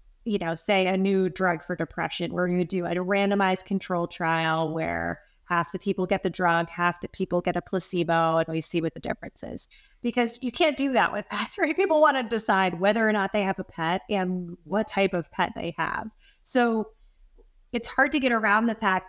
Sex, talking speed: female, 220 wpm